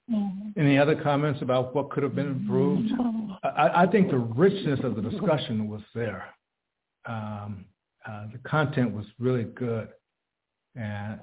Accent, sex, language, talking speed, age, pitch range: American, male, English, 145 wpm, 60-79, 120-145 Hz